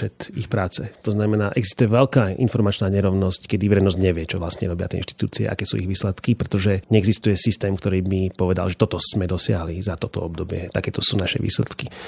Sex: male